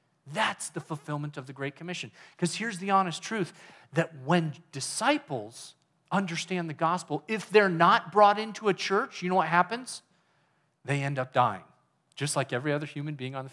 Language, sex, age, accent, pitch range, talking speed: English, male, 40-59, American, 140-200 Hz, 180 wpm